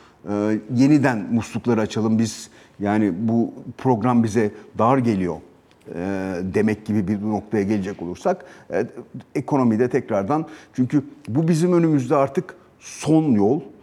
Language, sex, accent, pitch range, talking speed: Turkish, male, native, 115-155 Hz, 120 wpm